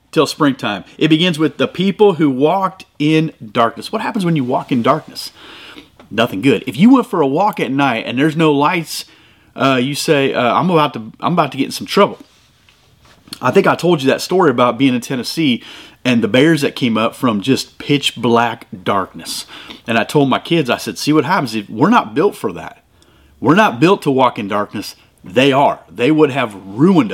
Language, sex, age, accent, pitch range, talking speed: English, male, 30-49, American, 130-160 Hz, 210 wpm